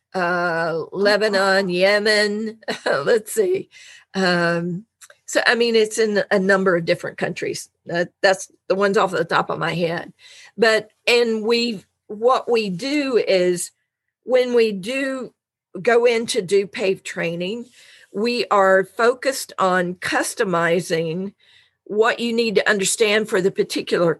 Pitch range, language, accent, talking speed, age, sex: 180-230 Hz, English, American, 135 wpm, 50-69, female